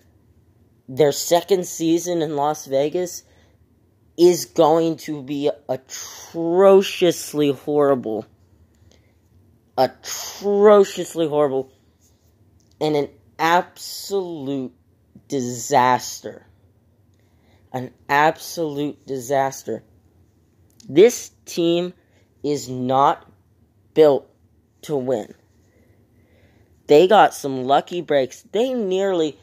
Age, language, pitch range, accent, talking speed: 10-29, English, 110-165 Hz, American, 70 wpm